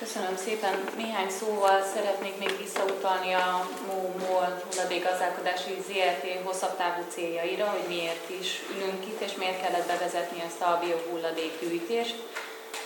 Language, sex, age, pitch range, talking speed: Hungarian, female, 20-39, 175-195 Hz, 120 wpm